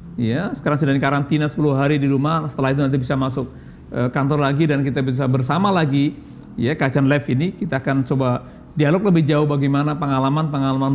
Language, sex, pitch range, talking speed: Indonesian, male, 135-170 Hz, 175 wpm